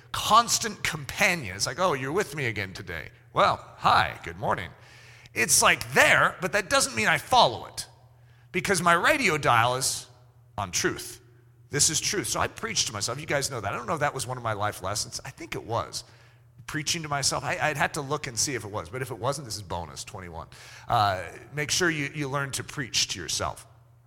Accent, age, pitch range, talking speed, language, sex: American, 40-59, 120-160 Hz, 220 wpm, English, male